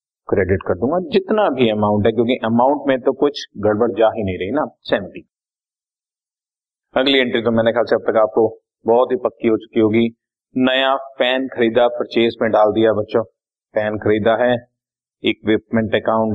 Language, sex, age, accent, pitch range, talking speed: Hindi, male, 30-49, native, 105-135 Hz, 170 wpm